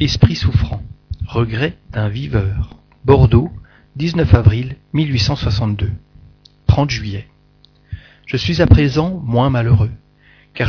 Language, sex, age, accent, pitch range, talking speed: French, male, 40-59, French, 110-135 Hz, 100 wpm